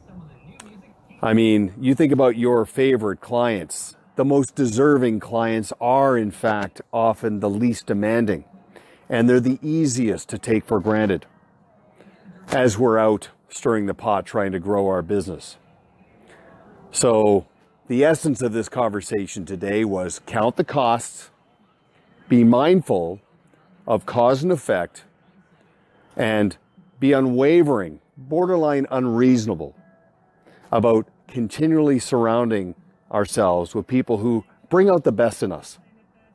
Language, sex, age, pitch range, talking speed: English, male, 40-59, 105-135 Hz, 120 wpm